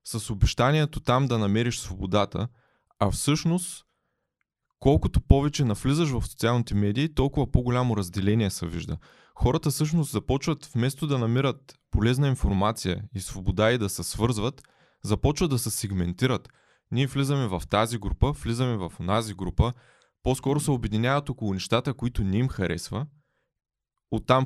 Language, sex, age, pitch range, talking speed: Bulgarian, male, 20-39, 105-135 Hz, 135 wpm